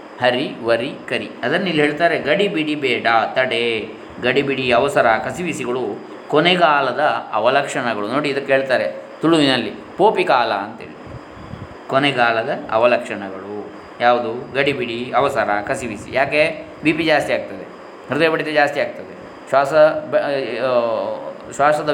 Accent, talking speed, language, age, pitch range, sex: native, 105 wpm, Kannada, 20-39, 120-155 Hz, male